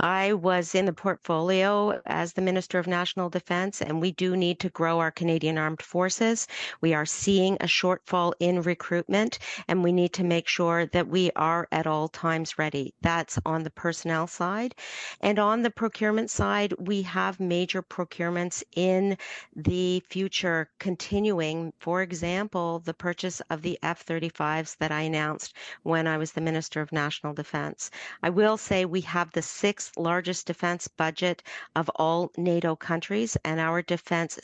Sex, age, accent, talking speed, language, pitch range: female, 50-69, American, 165 wpm, English, 155-180 Hz